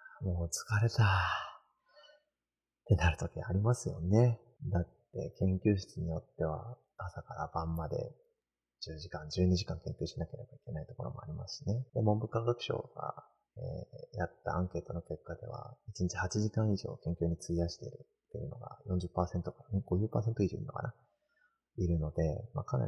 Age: 30-49